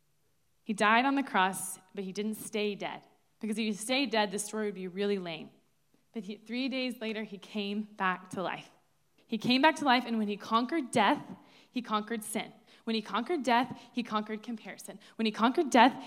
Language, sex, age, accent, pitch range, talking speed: English, female, 20-39, American, 205-245 Hz, 200 wpm